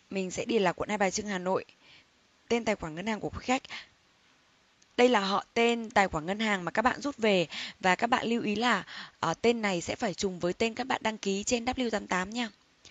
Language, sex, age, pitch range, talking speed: Vietnamese, female, 10-29, 190-240 Hz, 235 wpm